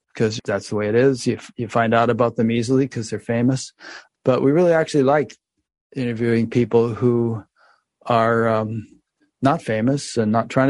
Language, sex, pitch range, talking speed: English, male, 115-130 Hz, 175 wpm